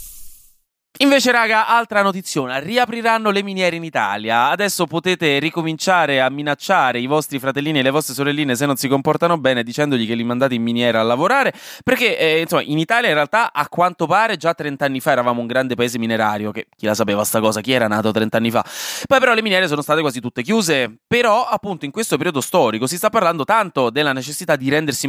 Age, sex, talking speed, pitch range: 20-39, male, 210 wpm, 120-170 Hz